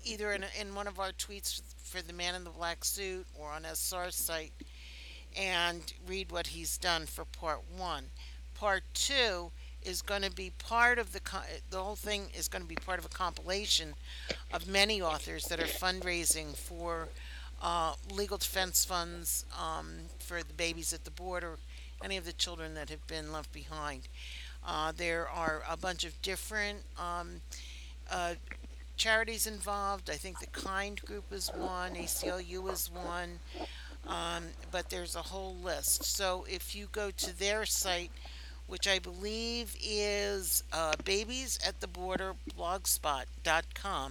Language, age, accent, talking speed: English, 60-79, American, 160 wpm